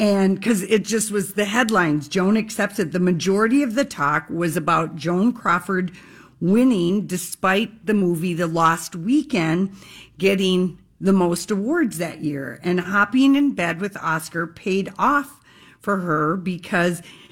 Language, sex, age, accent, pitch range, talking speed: English, female, 50-69, American, 175-215 Hz, 145 wpm